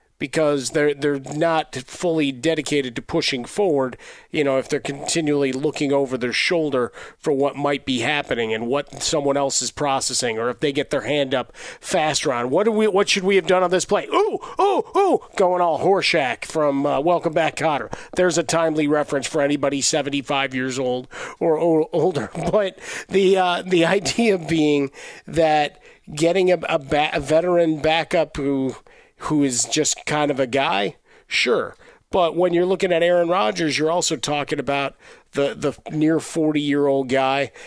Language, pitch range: English, 135-160 Hz